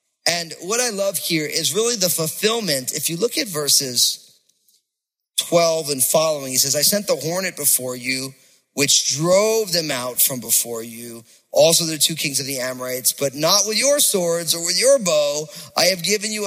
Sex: male